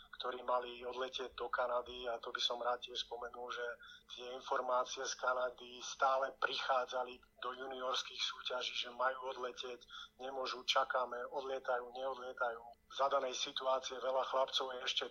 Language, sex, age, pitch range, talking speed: Slovak, male, 30-49, 125-135 Hz, 145 wpm